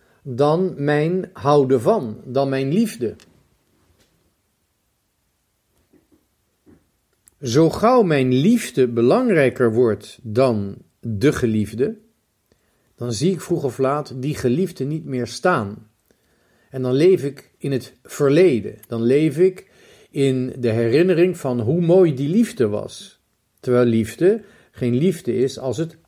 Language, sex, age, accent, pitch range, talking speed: Dutch, male, 50-69, Dutch, 125-175 Hz, 120 wpm